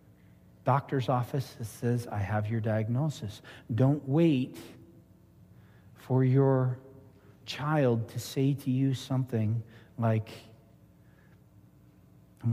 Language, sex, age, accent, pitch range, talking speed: English, male, 40-59, American, 105-135 Hz, 95 wpm